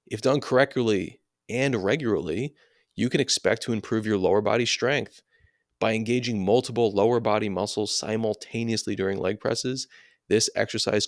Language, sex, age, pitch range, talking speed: English, male, 30-49, 100-120 Hz, 140 wpm